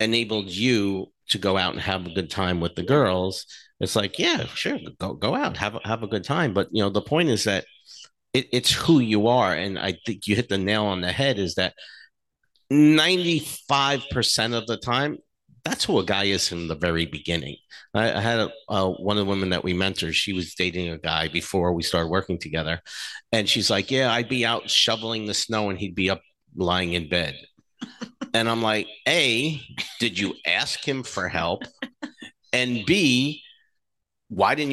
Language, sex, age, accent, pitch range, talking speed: English, male, 50-69, American, 95-125 Hz, 200 wpm